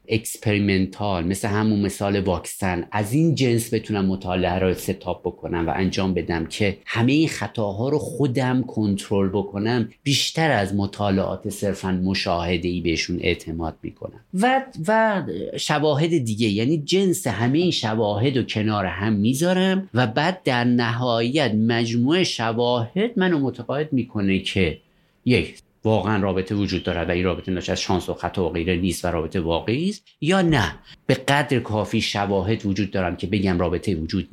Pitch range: 95-135 Hz